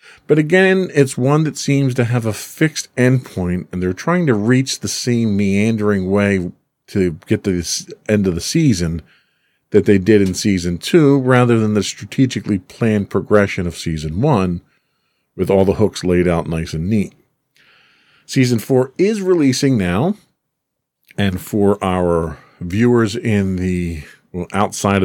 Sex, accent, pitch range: male, American, 90-125 Hz